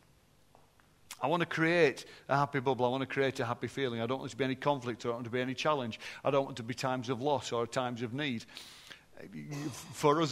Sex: male